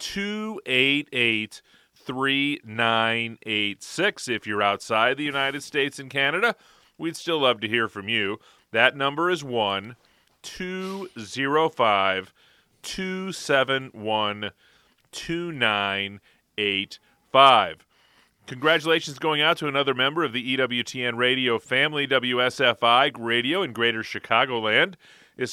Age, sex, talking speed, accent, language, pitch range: 30-49, male, 95 wpm, American, English, 115-160 Hz